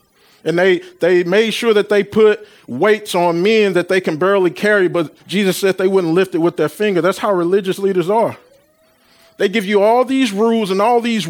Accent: American